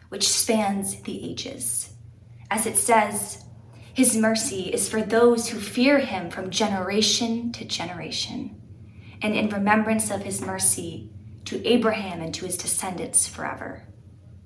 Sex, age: female, 20-39